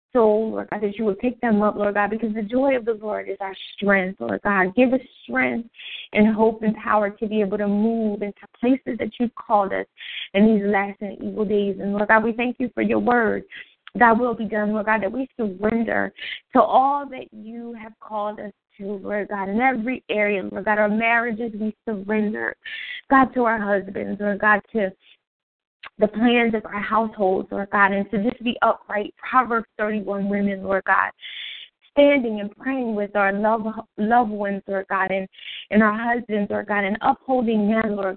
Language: English